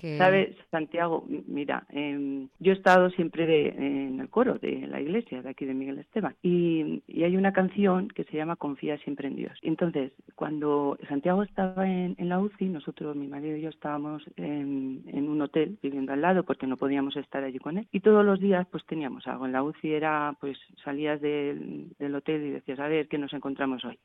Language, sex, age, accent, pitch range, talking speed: Spanish, female, 40-59, Spanish, 145-185 Hz, 210 wpm